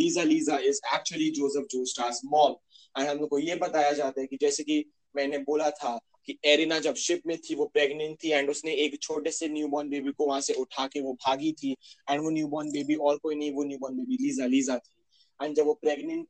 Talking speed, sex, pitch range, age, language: 200 wpm, male, 140-175 Hz, 20-39, Hindi